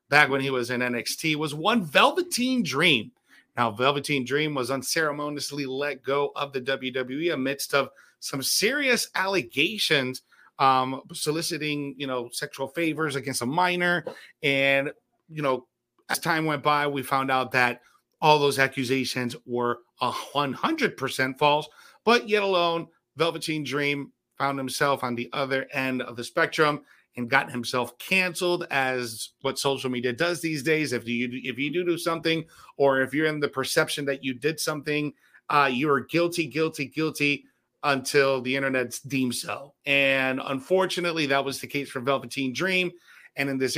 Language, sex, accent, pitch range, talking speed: English, male, American, 130-160 Hz, 160 wpm